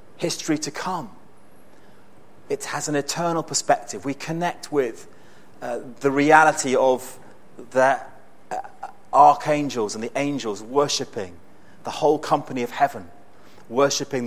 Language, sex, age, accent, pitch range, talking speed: English, male, 30-49, British, 130-160 Hz, 120 wpm